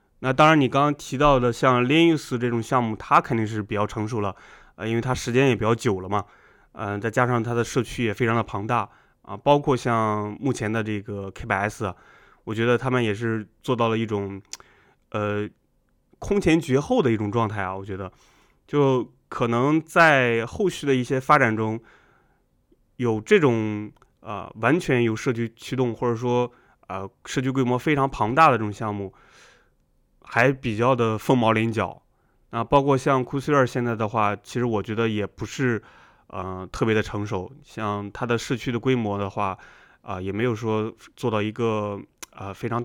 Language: Chinese